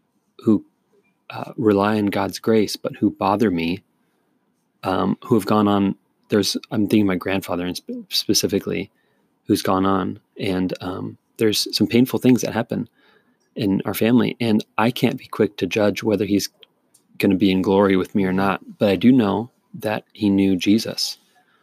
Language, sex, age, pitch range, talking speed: English, male, 30-49, 95-110 Hz, 170 wpm